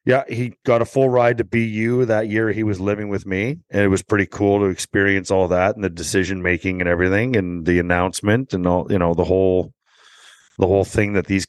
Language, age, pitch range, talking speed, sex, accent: English, 30-49, 95-110 Hz, 230 wpm, male, American